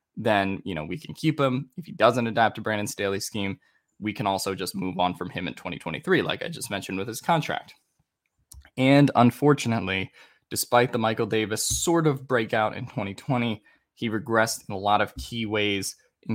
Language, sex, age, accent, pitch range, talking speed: English, male, 20-39, American, 100-125 Hz, 190 wpm